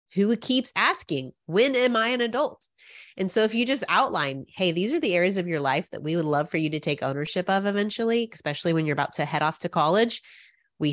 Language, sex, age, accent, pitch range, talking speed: English, female, 30-49, American, 150-205 Hz, 235 wpm